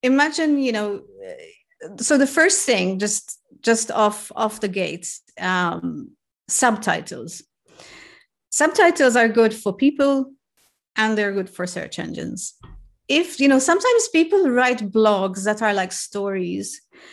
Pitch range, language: 200-265 Hz, English